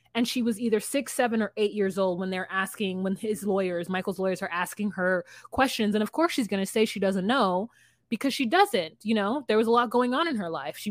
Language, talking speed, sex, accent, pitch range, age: English, 260 wpm, female, American, 180-225 Hz, 20-39